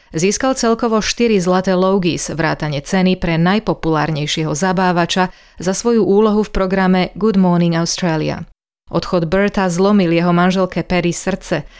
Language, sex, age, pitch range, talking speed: Slovak, female, 30-49, 170-195 Hz, 125 wpm